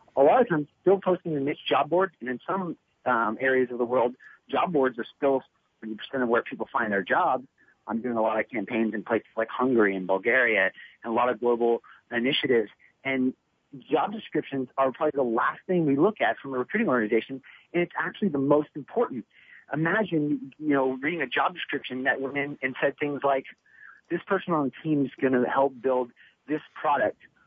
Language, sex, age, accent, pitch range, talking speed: English, male, 40-59, American, 130-165 Hz, 205 wpm